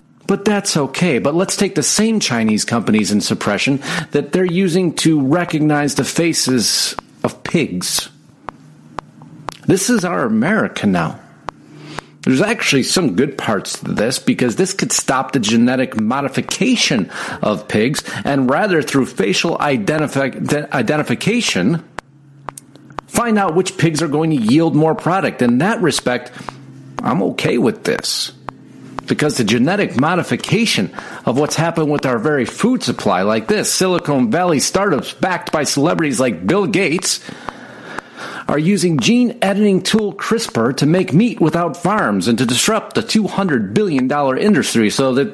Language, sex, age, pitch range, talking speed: English, male, 50-69, 135-200 Hz, 140 wpm